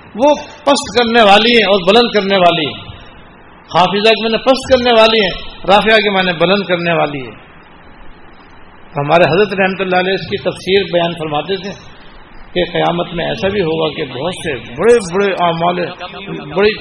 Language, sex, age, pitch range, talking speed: Urdu, male, 60-79, 170-205 Hz, 175 wpm